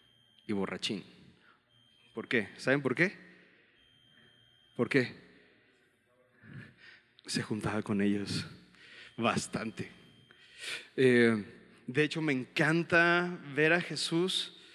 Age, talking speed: 30-49, 90 wpm